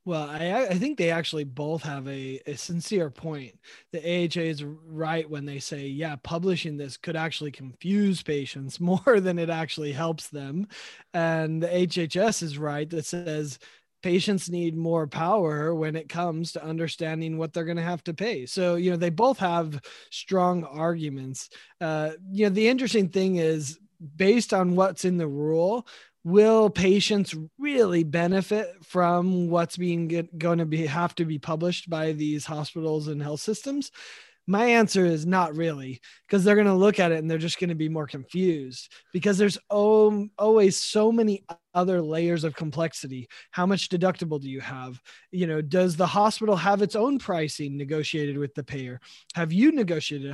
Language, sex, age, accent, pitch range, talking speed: English, male, 20-39, American, 155-190 Hz, 175 wpm